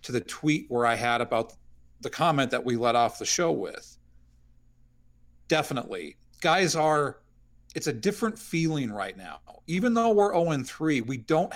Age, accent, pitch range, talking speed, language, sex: 40-59, American, 120-165 Hz, 160 wpm, English, male